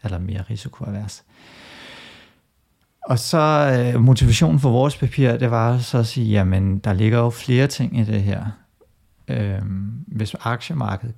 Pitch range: 105-125 Hz